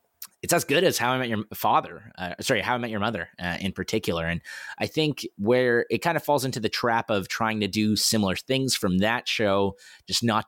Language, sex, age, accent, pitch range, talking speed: English, male, 20-39, American, 95-120 Hz, 235 wpm